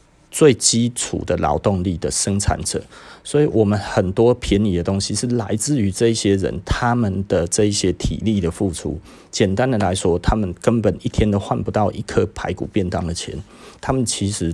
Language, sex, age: Chinese, male, 30-49